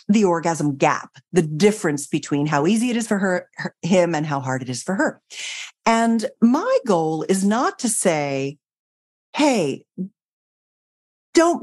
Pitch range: 180-270 Hz